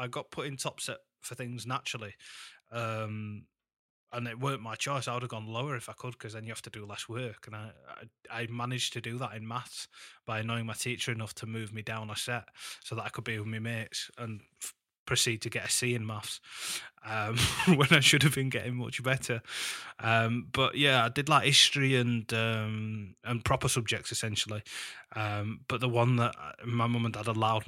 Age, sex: 20-39, male